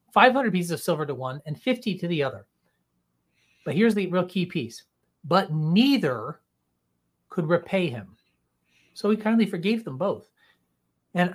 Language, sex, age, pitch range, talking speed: English, male, 30-49, 145-220 Hz, 155 wpm